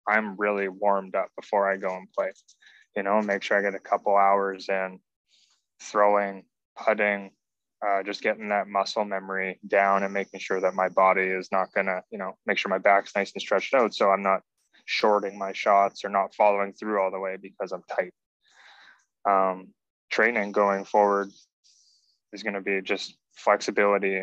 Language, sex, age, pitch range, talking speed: English, male, 20-39, 95-105 Hz, 185 wpm